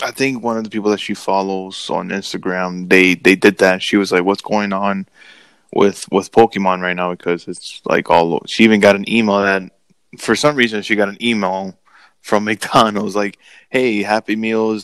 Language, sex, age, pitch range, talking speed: English, male, 20-39, 100-115 Hz, 200 wpm